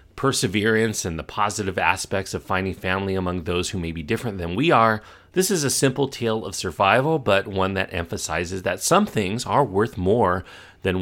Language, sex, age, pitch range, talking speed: English, male, 40-59, 90-115 Hz, 190 wpm